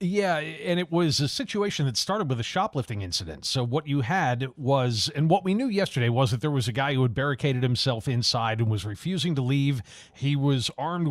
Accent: American